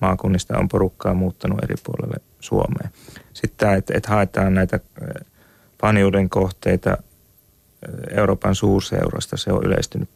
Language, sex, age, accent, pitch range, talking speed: Finnish, male, 30-49, native, 95-100 Hz, 110 wpm